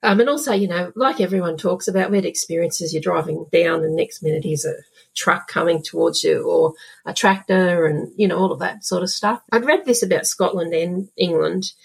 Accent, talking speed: Australian, 225 wpm